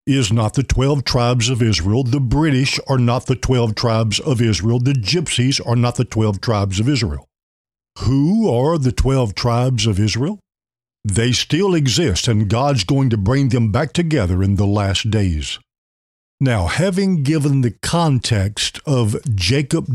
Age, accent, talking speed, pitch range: 50-69, American, 160 wpm, 110-150 Hz